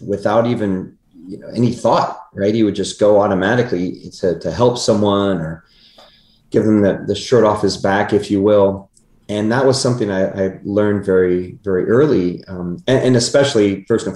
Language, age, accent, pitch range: English, 30-49, American, 95-110 Hz